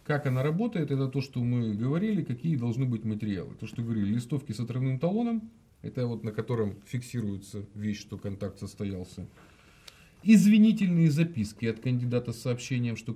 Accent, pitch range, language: native, 105-160 Hz, Russian